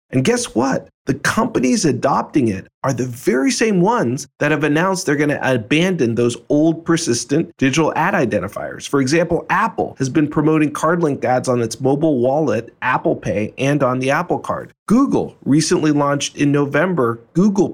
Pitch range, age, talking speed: 125-175 Hz, 40-59, 170 wpm